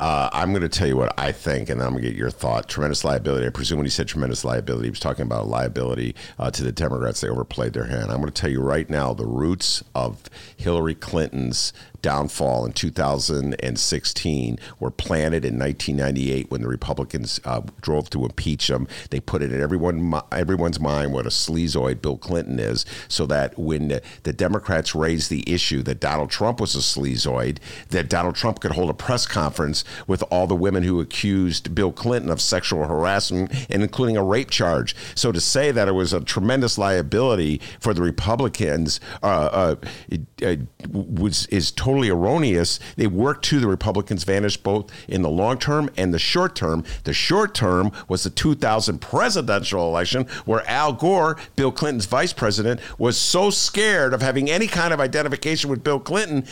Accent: American